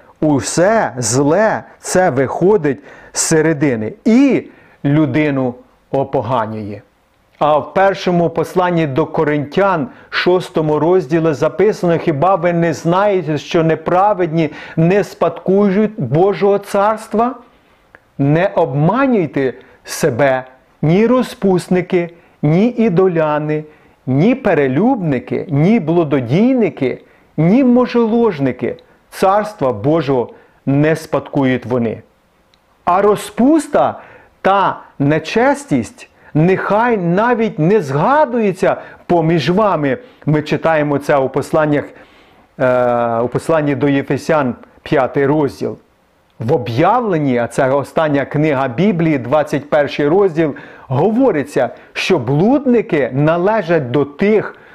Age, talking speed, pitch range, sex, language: 40-59, 90 wpm, 145-200 Hz, male, Ukrainian